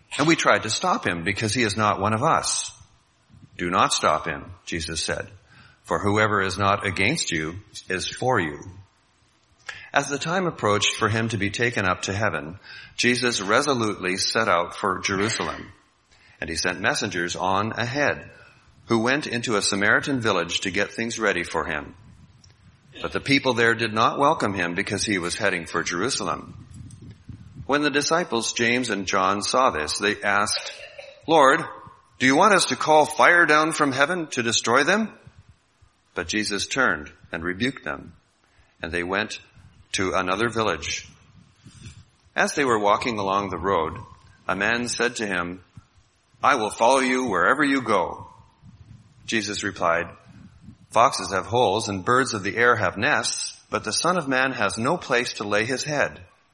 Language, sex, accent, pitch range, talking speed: English, male, American, 100-125 Hz, 165 wpm